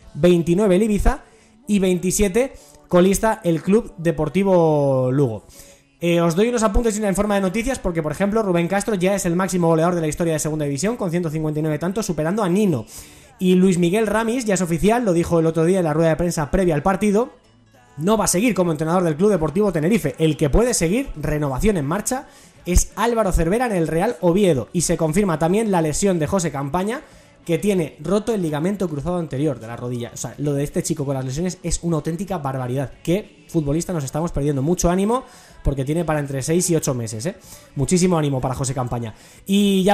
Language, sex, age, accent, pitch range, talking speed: Spanish, male, 20-39, Spanish, 160-205 Hz, 210 wpm